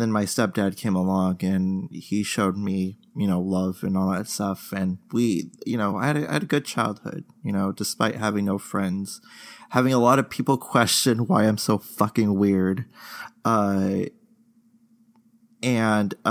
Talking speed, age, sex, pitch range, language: 165 wpm, 20-39, male, 100-145 Hz, English